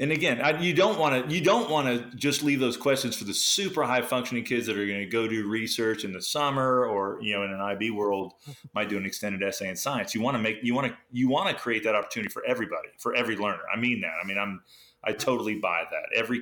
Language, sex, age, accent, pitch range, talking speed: English, male, 30-49, American, 95-120 Hz, 270 wpm